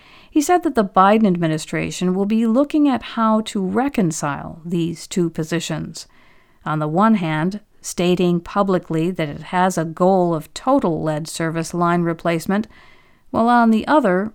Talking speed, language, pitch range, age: 155 wpm, English, 165-225 Hz, 50-69